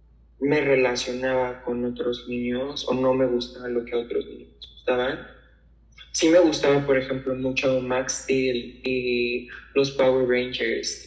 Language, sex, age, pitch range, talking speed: English, male, 20-39, 125-140 Hz, 150 wpm